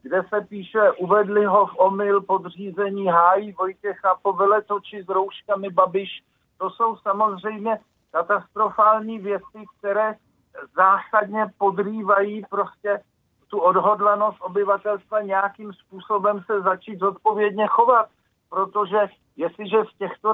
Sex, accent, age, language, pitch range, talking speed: male, native, 50-69, Czech, 190-210 Hz, 110 wpm